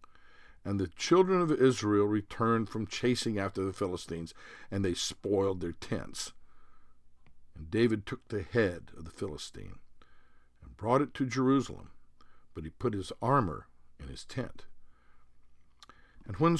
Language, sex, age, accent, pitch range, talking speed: English, male, 60-79, American, 80-115 Hz, 140 wpm